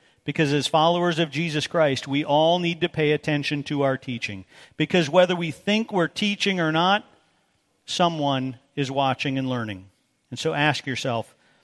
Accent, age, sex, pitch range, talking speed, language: American, 50-69, male, 130-160 Hz, 165 wpm, English